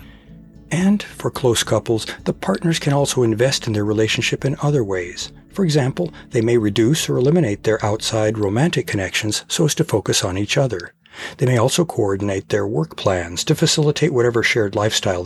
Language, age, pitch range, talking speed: English, 60-79, 105-160 Hz, 175 wpm